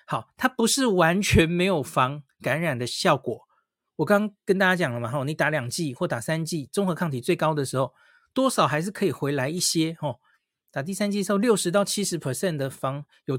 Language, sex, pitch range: Chinese, male, 145-200 Hz